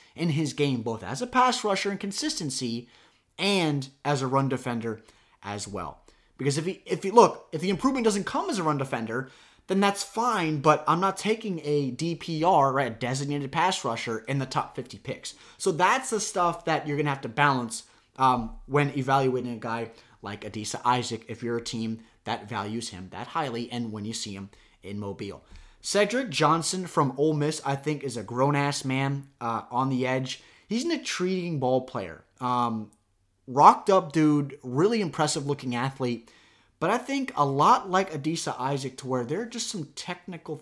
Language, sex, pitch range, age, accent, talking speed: English, male, 115-160 Hz, 30-49, American, 185 wpm